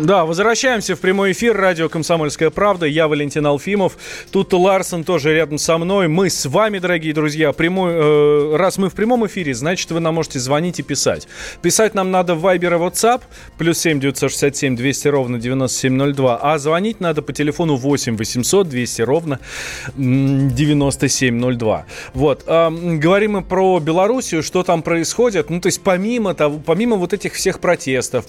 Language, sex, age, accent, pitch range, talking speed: Russian, male, 20-39, native, 135-180 Hz, 165 wpm